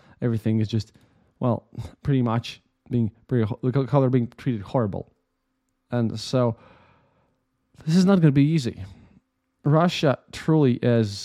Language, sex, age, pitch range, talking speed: English, male, 20-39, 110-135 Hz, 140 wpm